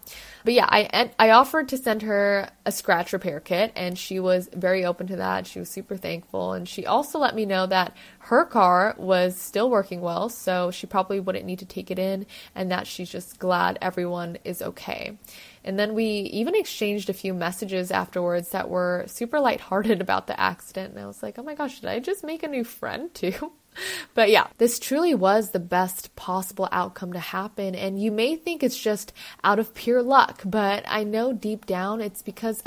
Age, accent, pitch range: 20-39, American, 185-225 Hz